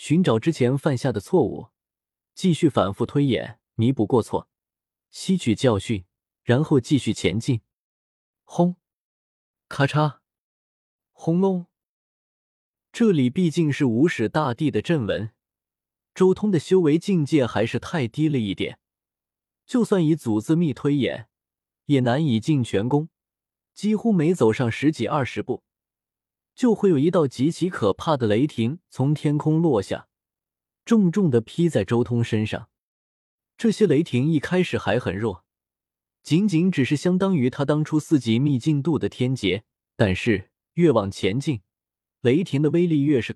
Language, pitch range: Chinese, 110-165 Hz